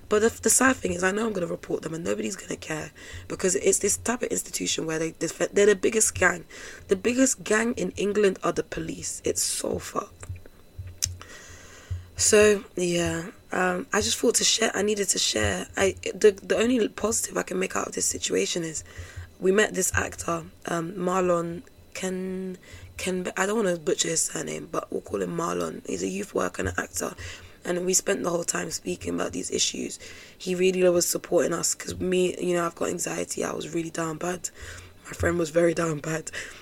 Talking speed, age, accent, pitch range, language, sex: 210 wpm, 20-39, British, 160-210 Hz, English, female